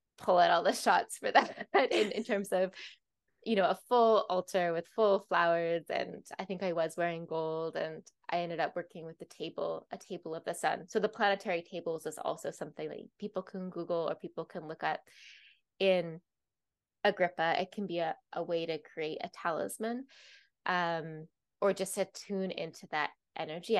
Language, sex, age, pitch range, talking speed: English, female, 20-39, 160-195 Hz, 190 wpm